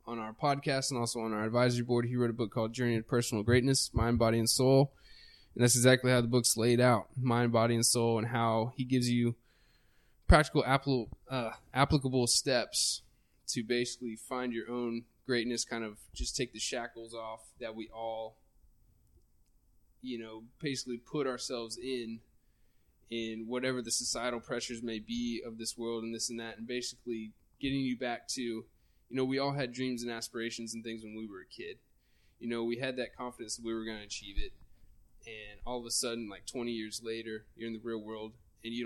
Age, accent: 10-29, American